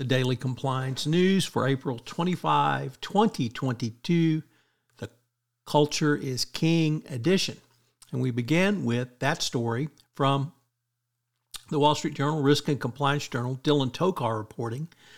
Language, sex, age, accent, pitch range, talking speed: English, male, 50-69, American, 125-150 Hz, 125 wpm